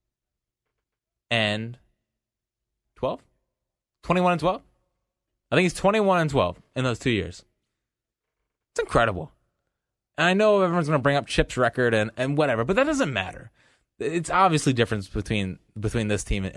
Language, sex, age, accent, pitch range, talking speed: English, male, 20-39, American, 120-180 Hz, 155 wpm